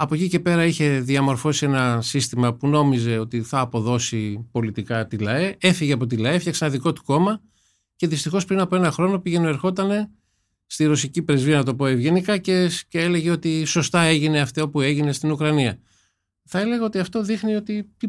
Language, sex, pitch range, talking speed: Greek, male, 130-180 Hz, 190 wpm